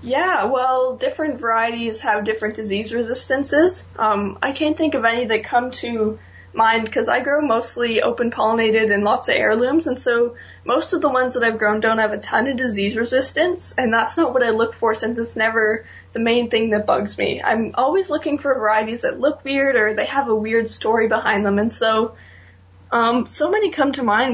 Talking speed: 205 wpm